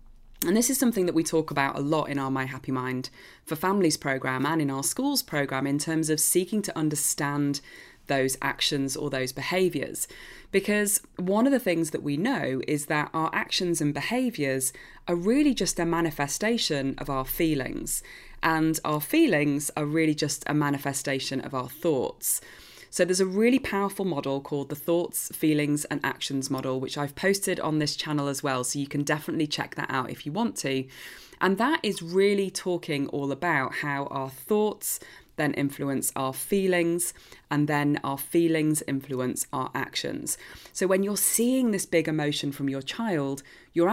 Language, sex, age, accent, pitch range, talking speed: English, female, 20-39, British, 140-175 Hz, 180 wpm